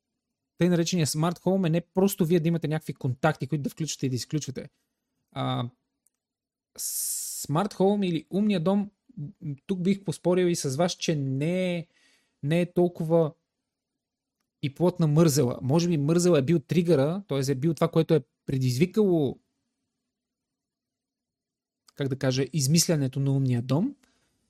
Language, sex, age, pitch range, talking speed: Bulgarian, male, 30-49, 145-185 Hz, 140 wpm